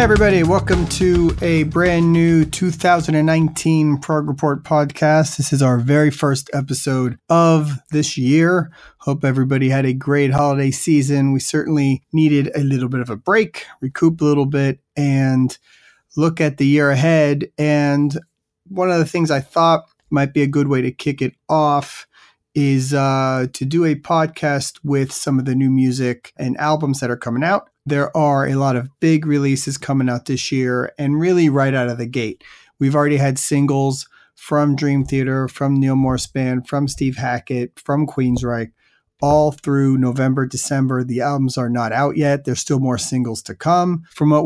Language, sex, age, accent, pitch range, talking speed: English, male, 30-49, American, 130-155 Hz, 180 wpm